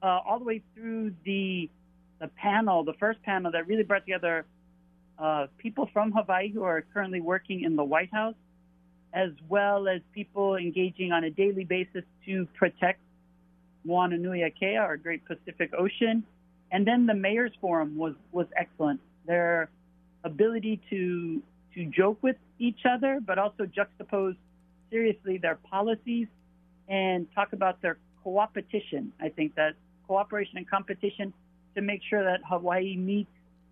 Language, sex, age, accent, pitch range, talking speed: English, male, 40-59, American, 175-200 Hz, 145 wpm